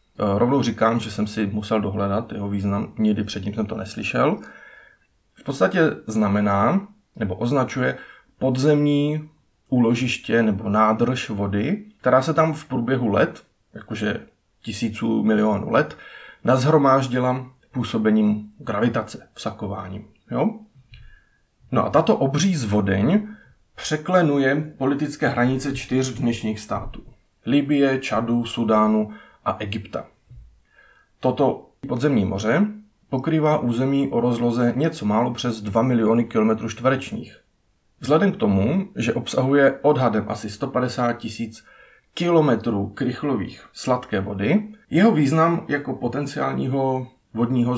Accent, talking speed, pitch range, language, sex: native, 110 wpm, 110-140 Hz, Czech, male